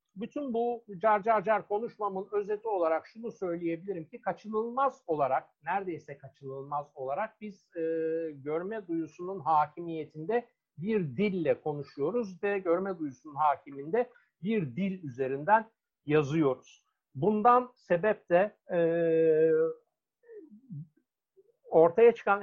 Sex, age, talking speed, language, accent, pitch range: male, 60-79, 100 wpm, Turkish, native, 155-215 Hz